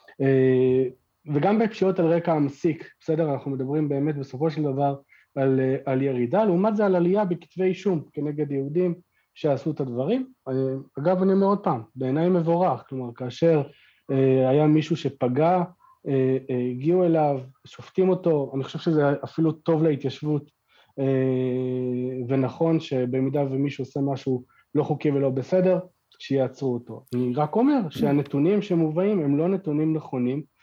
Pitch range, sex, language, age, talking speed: 130-165 Hz, male, Hebrew, 40-59, 135 wpm